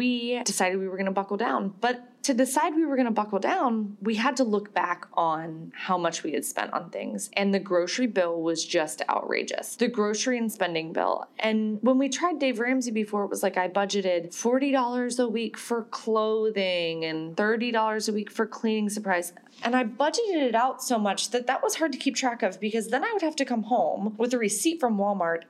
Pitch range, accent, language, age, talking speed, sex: 190-250 Hz, American, English, 20-39, 220 wpm, female